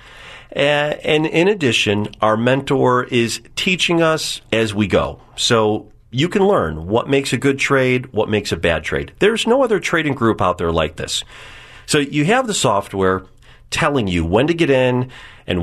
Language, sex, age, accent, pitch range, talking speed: English, male, 40-59, American, 105-140 Hz, 175 wpm